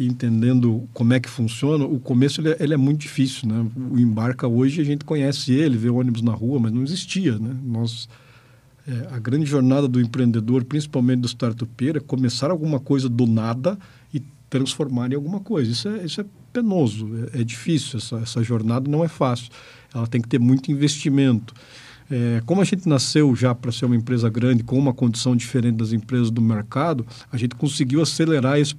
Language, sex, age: Portuguese, male, 50-69